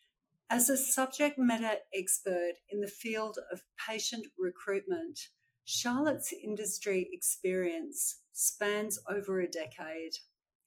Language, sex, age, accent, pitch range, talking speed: English, female, 50-69, Australian, 190-240 Hz, 100 wpm